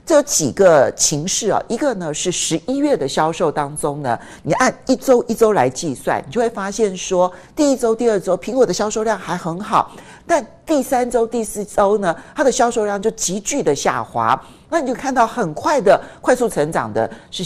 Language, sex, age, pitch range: Chinese, male, 50-69, 160-230 Hz